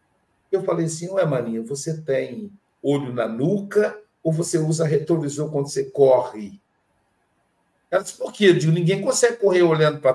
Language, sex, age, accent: Portuguese, male, 60-79, Brazilian